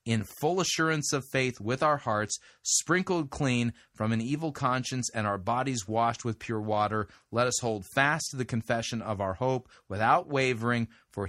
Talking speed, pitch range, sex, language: 180 wpm, 110-130 Hz, male, English